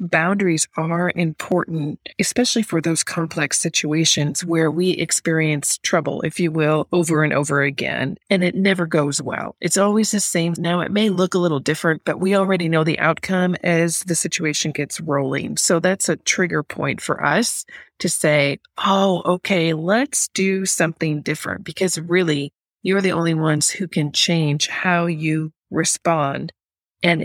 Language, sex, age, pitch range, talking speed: English, female, 40-59, 155-185 Hz, 165 wpm